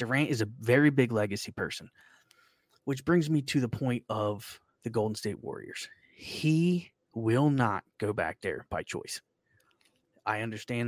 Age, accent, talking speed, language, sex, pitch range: 20-39, American, 155 wpm, English, male, 105-130 Hz